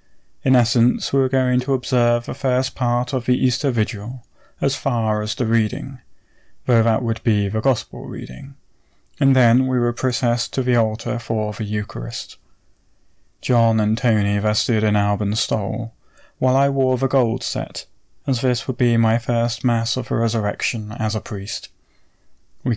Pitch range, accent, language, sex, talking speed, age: 105-125 Hz, British, English, male, 170 wpm, 30-49